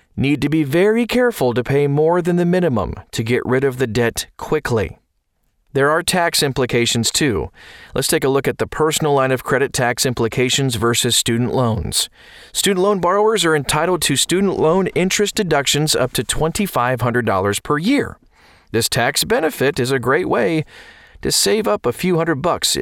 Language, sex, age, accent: English, male, 40-59, American